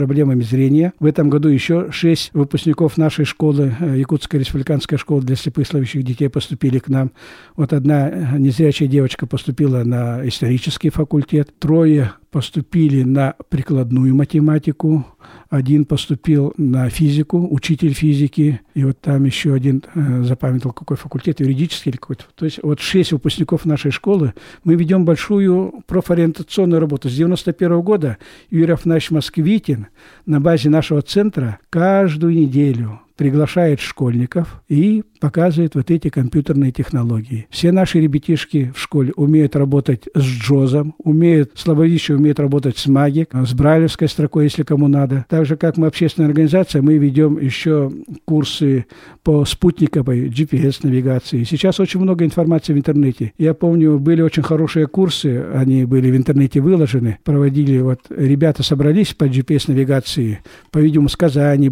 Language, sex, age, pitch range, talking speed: Russian, male, 60-79, 135-160 Hz, 135 wpm